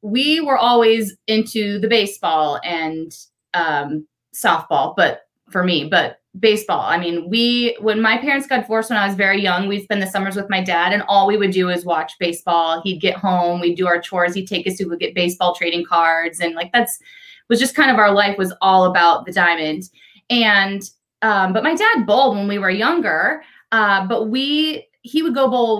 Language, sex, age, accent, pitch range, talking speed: English, female, 20-39, American, 180-225 Hz, 205 wpm